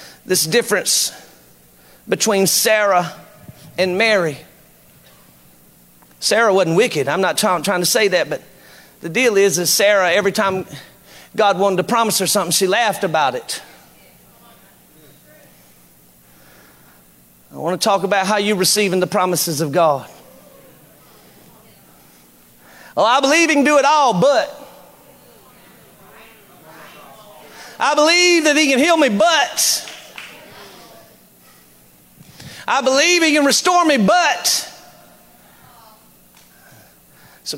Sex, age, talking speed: male, 40-59, 110 wpm